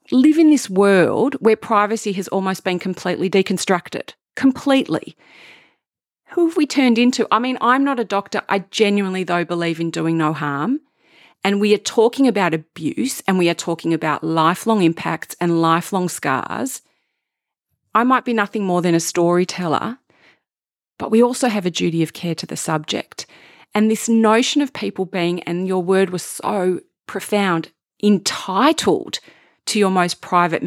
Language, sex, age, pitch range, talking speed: English, female, 40-59, 175-240 Hz, 160 wpm